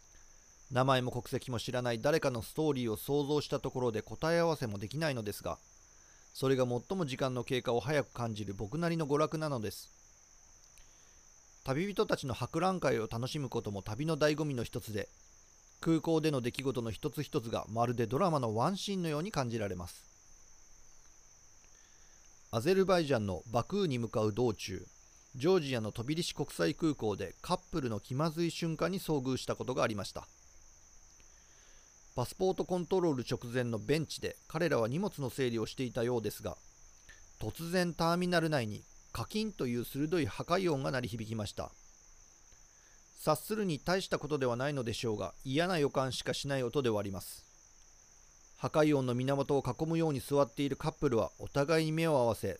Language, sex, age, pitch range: Japanese, male, 40-59, 110-155 Hz